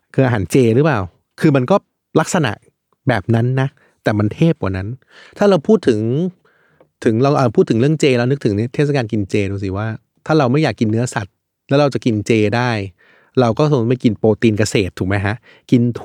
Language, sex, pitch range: Thai, male, 110-140 Hz